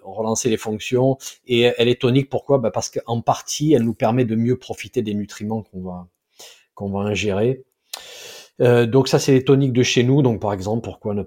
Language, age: French, 40-59